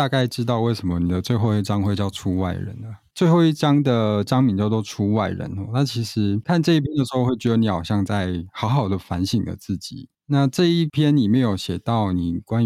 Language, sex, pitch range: Chinese, male, 95-130 Hz